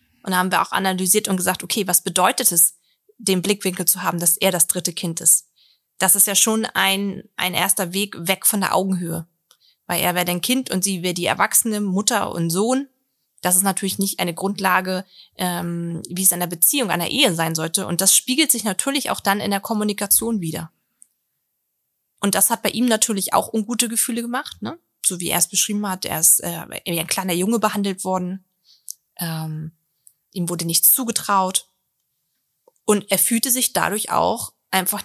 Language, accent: German, German